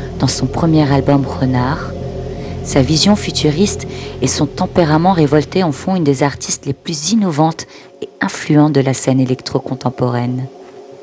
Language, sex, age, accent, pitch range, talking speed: French, female, 40-59, French, 130-155 Hz, 140 wpm